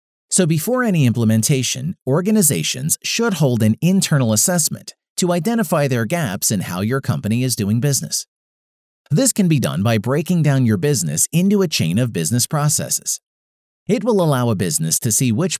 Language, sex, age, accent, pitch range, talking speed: English, male, 40-59, American, 115-175 Hz, 170 wpm